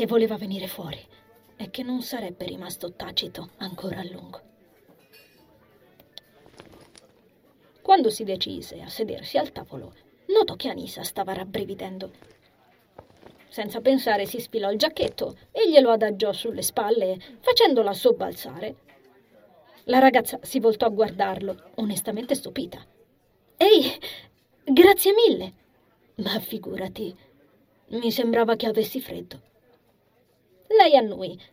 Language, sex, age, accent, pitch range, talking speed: Italian, female, 30-49, native, 195-245 Hz, 110 wpm